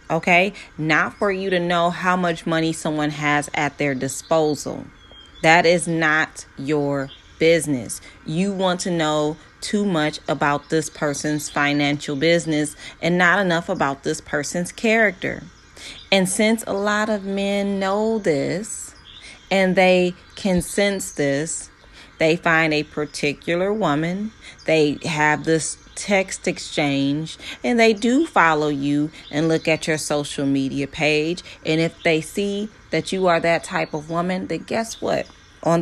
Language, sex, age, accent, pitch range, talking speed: English, female, 30-49, American, 150-200 Hz, 145 wpm